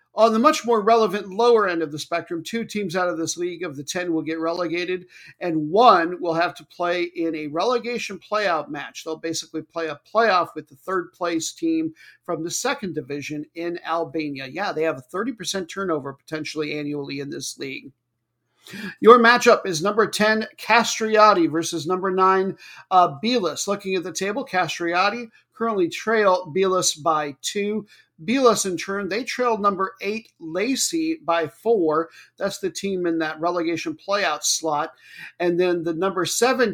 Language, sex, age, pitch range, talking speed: English, male, 50-69, 165-210 Hz, 170 wpm